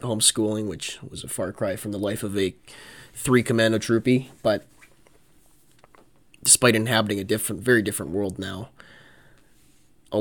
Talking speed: 135 wpm